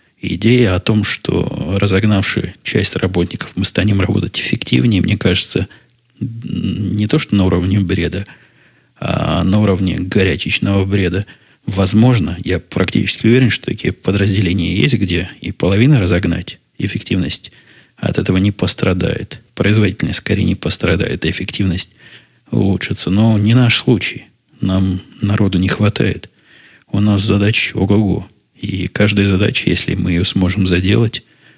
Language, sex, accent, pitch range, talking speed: Russian, male, native, 95-110 Hz, 130 wpm